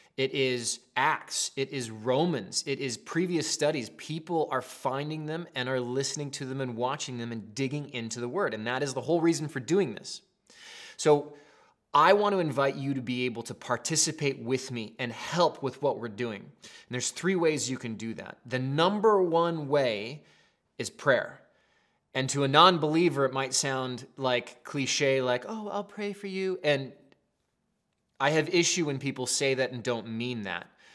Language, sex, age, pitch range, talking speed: English, male, 20-39, 125-165 Hz, 180 wpm